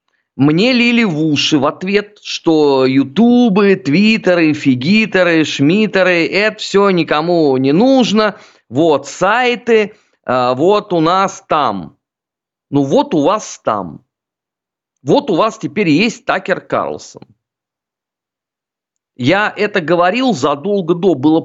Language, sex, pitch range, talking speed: Russian, male, 145-210 Hz, 110 wpm